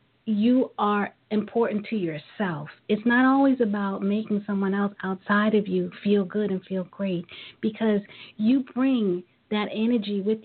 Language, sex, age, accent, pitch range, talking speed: English, female, 40-59, American, 185-210 Hz, 150 wpm